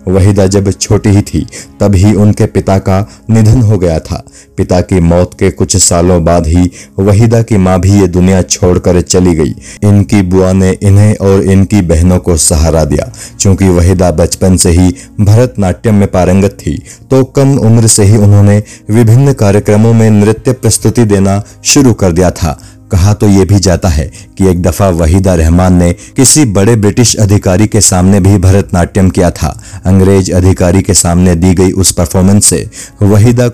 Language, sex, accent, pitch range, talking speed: Hindi, male, native, 90-110 Hz, 165 wpm